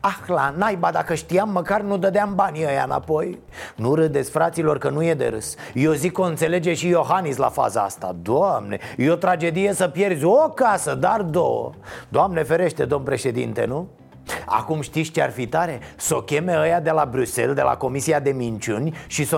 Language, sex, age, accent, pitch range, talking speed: Romanian, male, 30-49, native, 140-185 Hz, 195 wpm